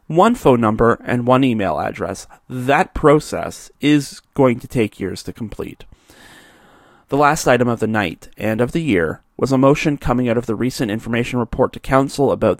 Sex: male